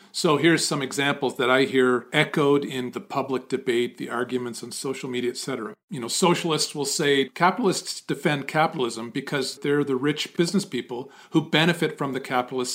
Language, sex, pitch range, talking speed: English, male, 130-155 Hz, 175 wpm